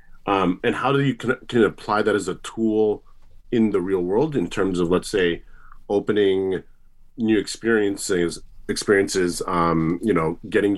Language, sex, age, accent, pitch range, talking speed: English, male, 30-49, American, 90-130 Hz, 160 wpm